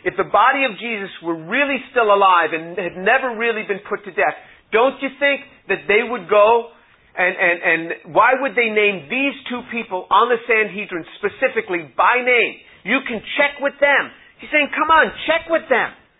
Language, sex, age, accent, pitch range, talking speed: English, male, 40-59, American, 190-265 Hz, 195 wpm